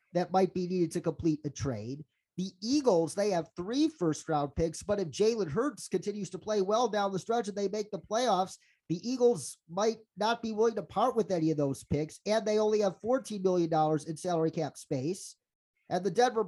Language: English